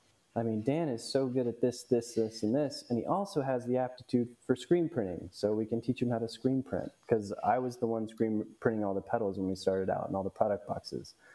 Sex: male